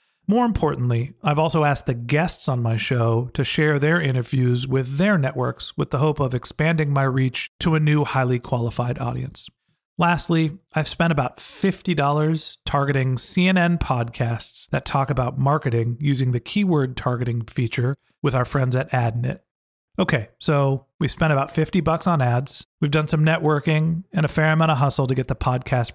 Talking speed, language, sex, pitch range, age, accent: 175 wpm, English, male, 125-160 Hz, 40-59, American